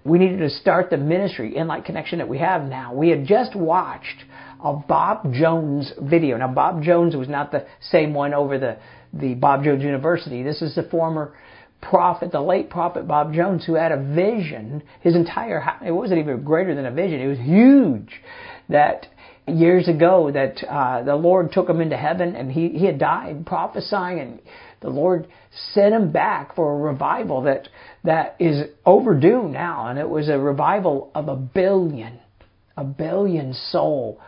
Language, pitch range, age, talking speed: English, 145-175 Hz, 50-69, 180 wpm